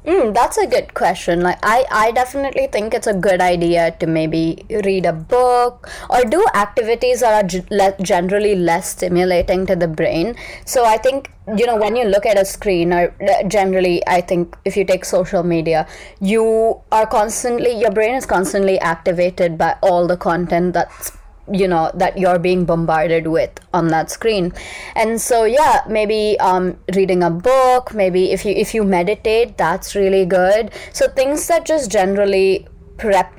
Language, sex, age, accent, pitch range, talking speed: English, female, 20-39, Indian, 175-215 Hz, 175 wpm